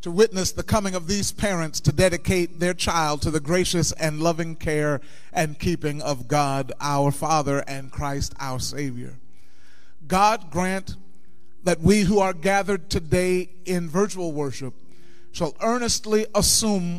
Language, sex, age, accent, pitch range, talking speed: English, male, 40-59, American, 145-195 Hz, 145 wpm